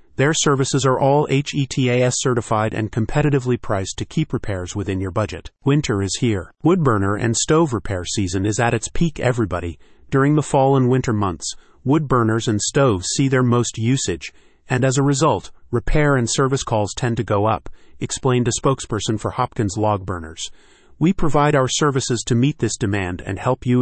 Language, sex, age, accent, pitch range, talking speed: English, male, 40-59, American, 105-135 Hz, 180 wpm